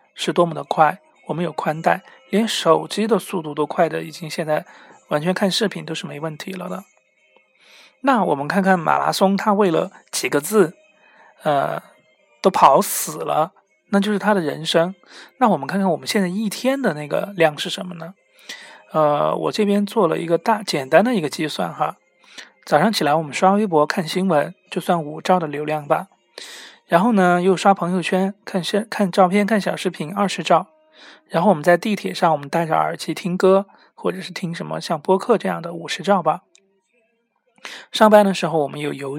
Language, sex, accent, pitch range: Chinese, male, native, 160-200 Hz